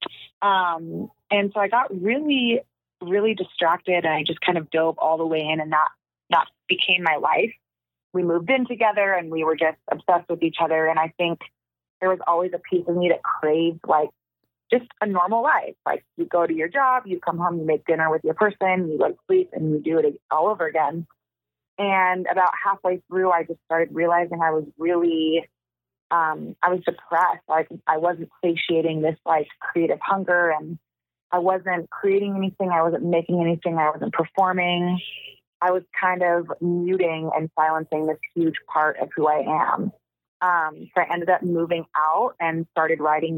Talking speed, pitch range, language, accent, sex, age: 190 wpm, 160-185 Hz, English, American, female, 30-49